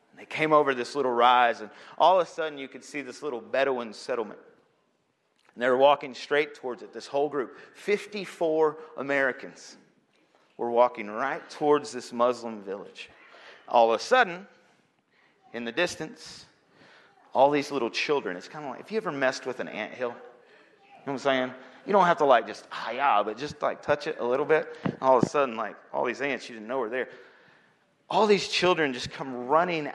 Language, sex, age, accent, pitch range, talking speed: English, male, 40-59, American, 130-175 Hz, 195 wpm